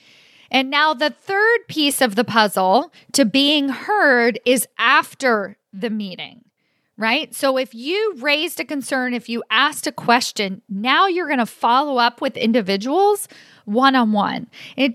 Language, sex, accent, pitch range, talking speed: English, female, American, 215-270 Hz, 150 wpm